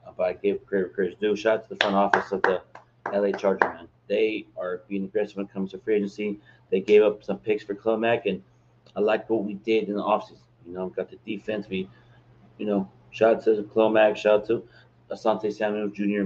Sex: male